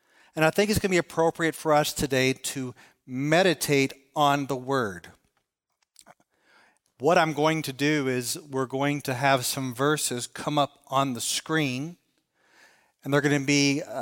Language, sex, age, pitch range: English, male, 40-59, 125-150 Hz